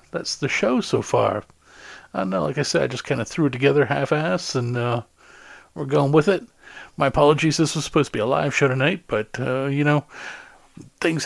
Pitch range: 130-165 Hz